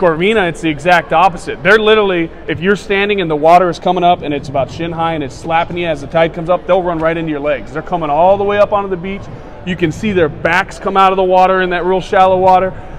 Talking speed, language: 275 wpm, English